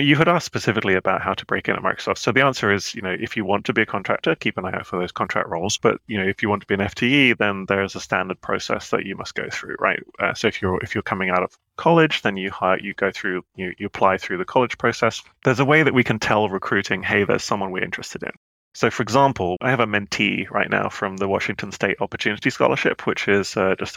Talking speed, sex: 275 wpm, male